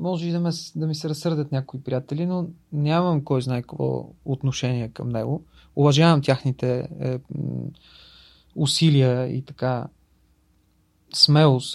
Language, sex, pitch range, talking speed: Bulgarian, male, 130-165 Hz, 125 wpm